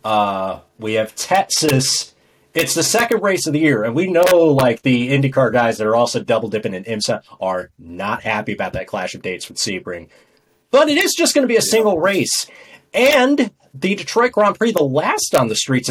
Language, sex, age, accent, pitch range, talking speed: English, male, 30-49, American, 115-190 Hz, 205 wpm